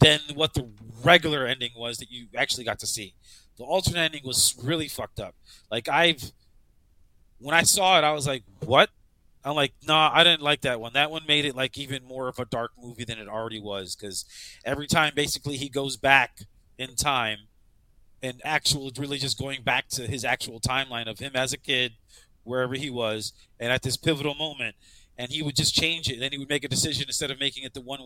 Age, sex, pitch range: 30-49, male, 110-150 Hz